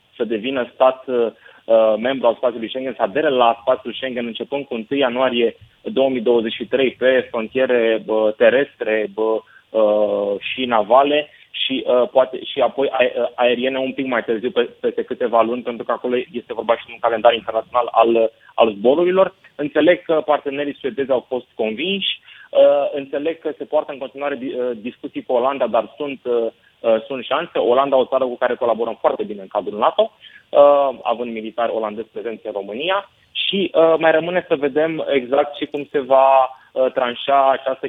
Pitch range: 120-145 Hz